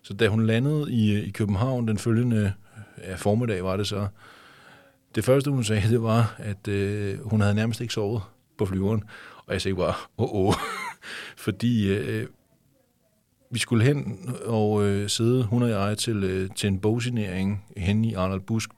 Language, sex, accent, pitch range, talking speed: Danish, male, native, 95-115 Hz, 180 wpm